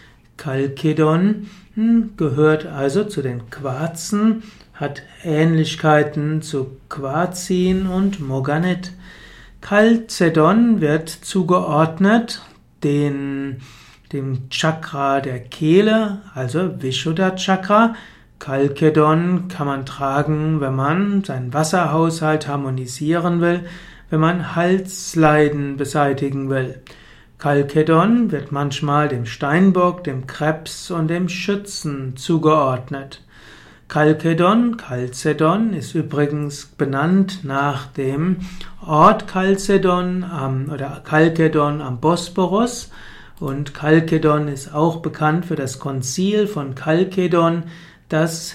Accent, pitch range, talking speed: German, 145-180 Hz, 90 wpm